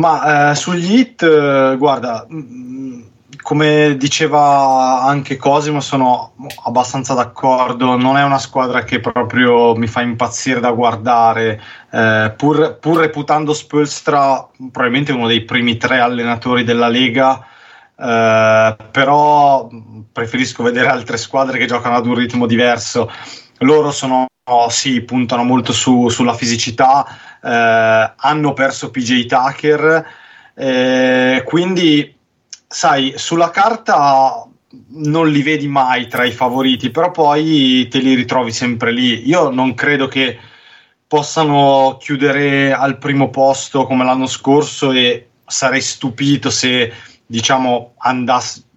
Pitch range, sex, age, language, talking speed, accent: 120-140 Hz, male, 30-49, Italian, 120 wpm, native